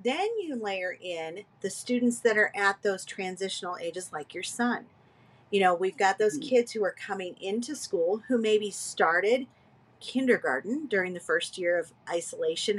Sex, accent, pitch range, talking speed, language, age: female, American, 185-245 Hz, 170 wpm, English, 40-59